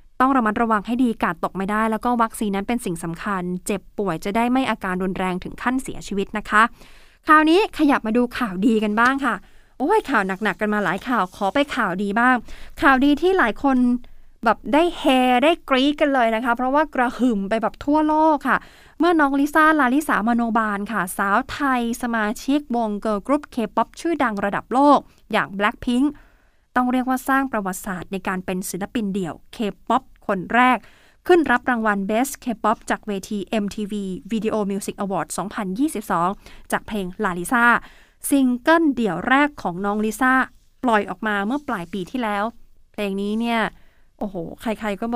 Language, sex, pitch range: Thai, female, 210-275 Hz